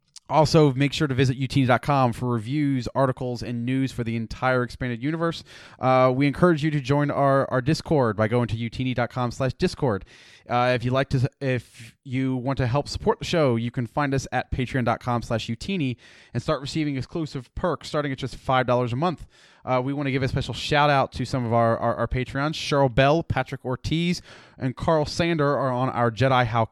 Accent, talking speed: American, 200 wpm